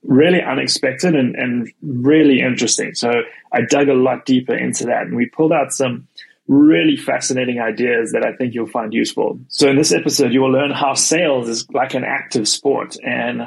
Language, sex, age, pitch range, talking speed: English, male, 20-39, 120-140 Hz, 190 wpm